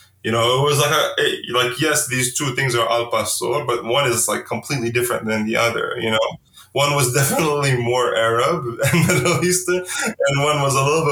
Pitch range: 110-130 Hz